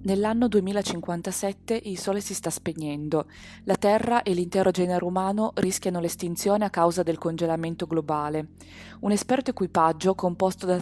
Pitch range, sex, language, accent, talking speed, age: 170-205 Hz, female, Italian, native, 140 wpm, 20-39